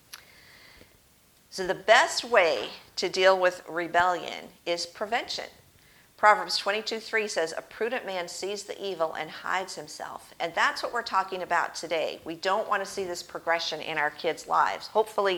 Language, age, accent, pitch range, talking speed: English, 50-69, American, 165-200 Hz, 155 wpm